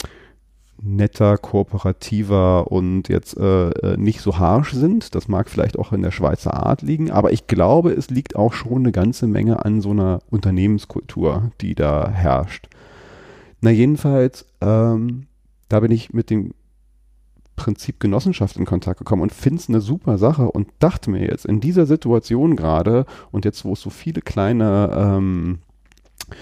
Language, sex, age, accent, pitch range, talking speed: German, male, 40-59, German, 100-120 Hz, 160 wpm